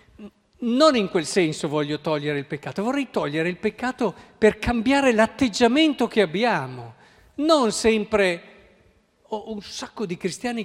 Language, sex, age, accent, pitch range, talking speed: Italian, male, 50-69, native, 145-215 Hz, 135 wpm